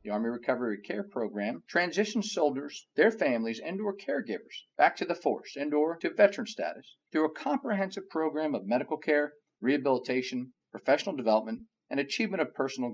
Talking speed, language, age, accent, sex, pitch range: 160 wpm, English, 50-69, American, male, 125-175 Hz